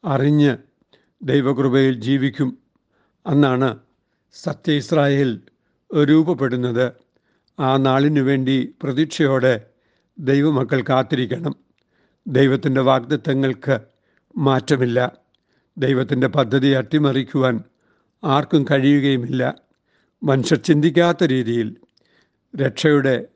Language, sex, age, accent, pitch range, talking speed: Malayalam, male, 60-79, native, 130-160 Hz, 60 wpm